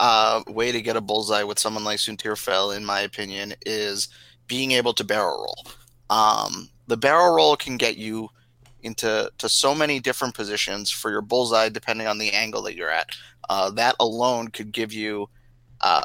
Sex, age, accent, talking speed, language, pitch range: male, 30-49, American, 185 wpm, English, 110-125 Hz